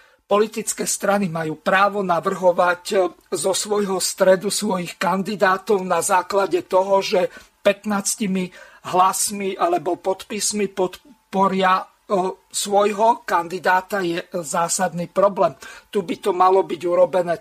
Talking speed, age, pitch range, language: 105 wpm, 50-69, 180-205 Hz, Slovak